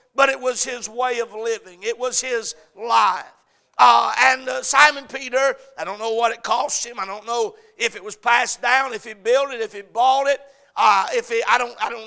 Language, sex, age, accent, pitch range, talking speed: English, male, 60-79, American, 230-285 Hz, 215 wpm